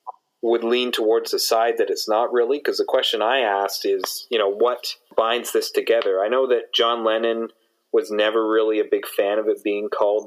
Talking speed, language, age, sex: 210 wpm, English, 30-49, male